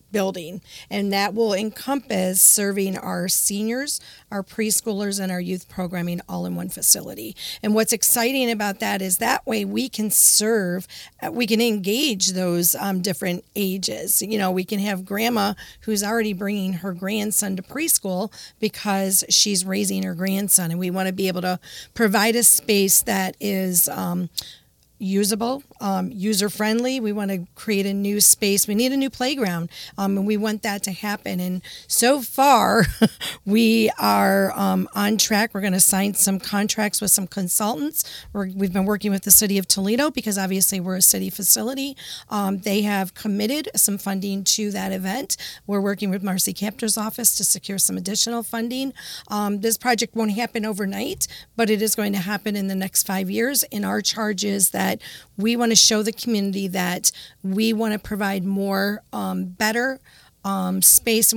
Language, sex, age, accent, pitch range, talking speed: English, female, 40-59, American, 190-220 Hz, 175 wpm